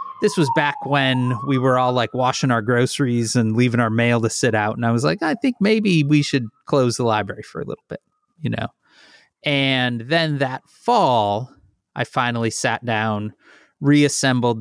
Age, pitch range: 30-49, 110-145 Hz